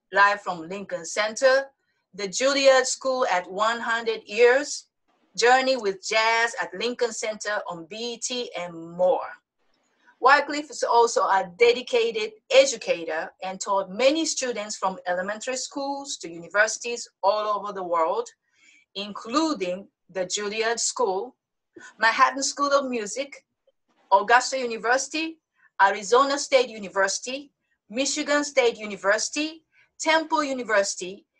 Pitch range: 200-270 Hz